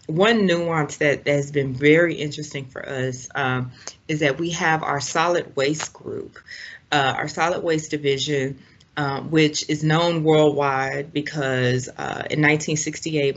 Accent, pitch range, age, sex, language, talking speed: American, 135-150 Hz, 30-49, female, English, 145 wpm